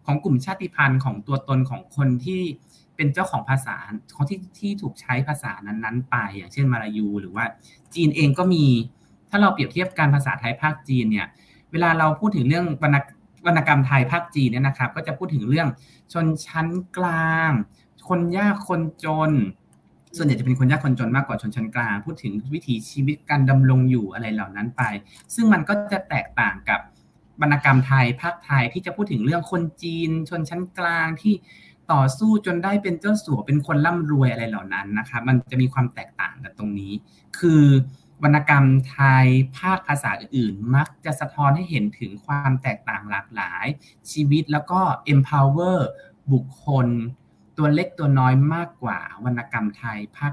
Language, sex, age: Thai, male, 20-39